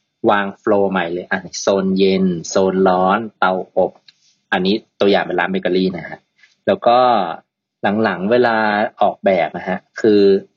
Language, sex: Thai, male